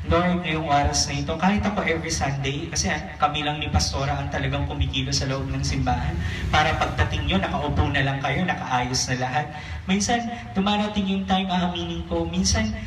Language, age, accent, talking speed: English, 20-39, Filipino, 175 wpm